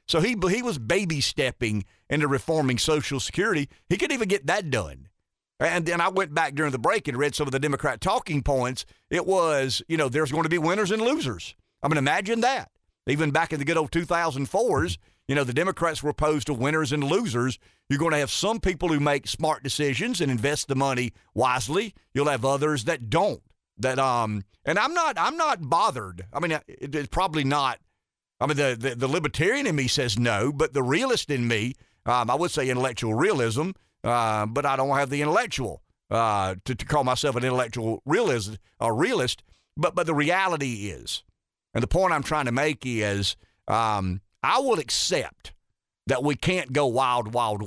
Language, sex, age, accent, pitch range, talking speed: English, male, 50-69, American, 120-155 Hz, 195 wpm